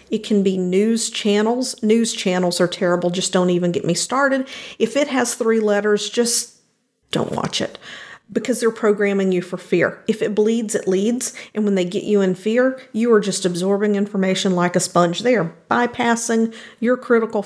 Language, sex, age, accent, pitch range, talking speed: English, female, 50-69, American, 190-225 Hz, 190 wpm